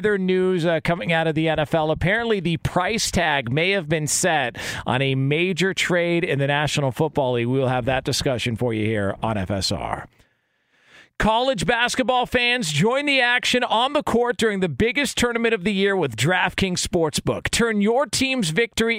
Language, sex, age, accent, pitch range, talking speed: English, male, 40-59, American, 170-230 Hz, 175 wpm